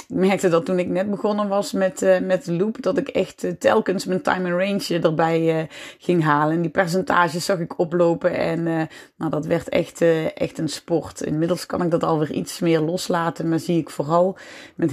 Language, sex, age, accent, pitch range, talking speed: Dutch, female, 30-49, Dutch, 155-195 Hz, 215 wpm